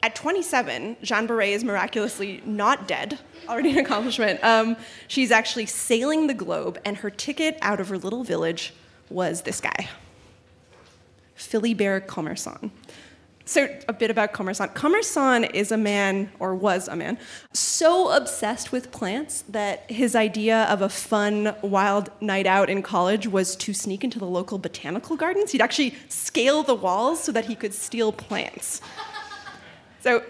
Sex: female